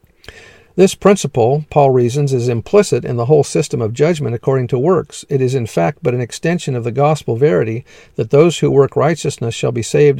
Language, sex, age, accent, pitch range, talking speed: English, male, 50-69, American, 120-150 Hz, 200 wpm